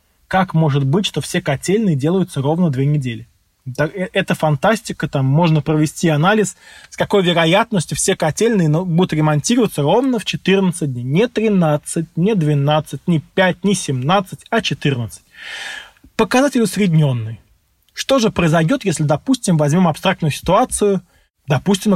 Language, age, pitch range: Russian, 20-39, 140-190 Hz